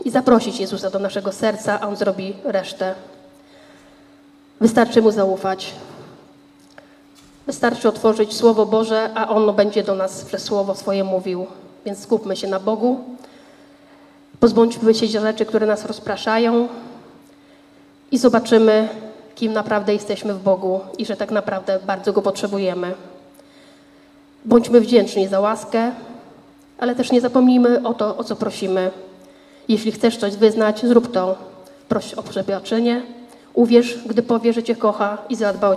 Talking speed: 140 wpm